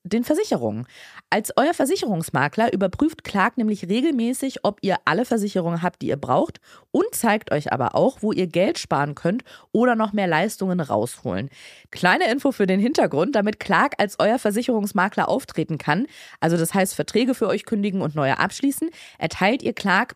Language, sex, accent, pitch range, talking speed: German, female, German, 175-240 Hz, 170 wpm